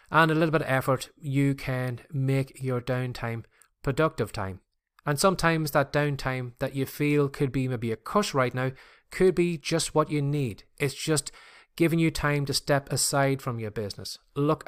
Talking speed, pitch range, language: 185 wpm, 125-155 Hz, English